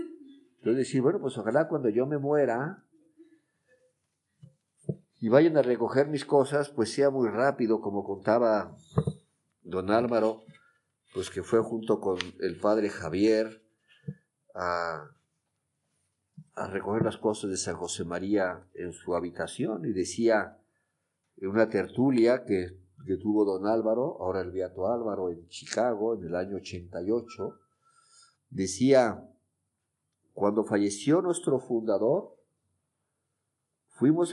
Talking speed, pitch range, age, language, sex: 120 wpm, 105-145 Hz, 50-69, Spanish, male